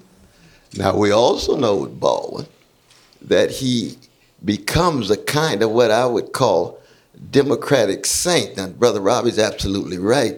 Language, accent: English, American